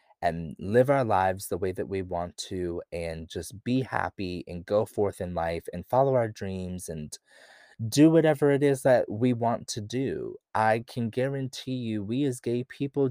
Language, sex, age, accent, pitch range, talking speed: English, male, 20-39, American, 100-135 Hz, 190 wpm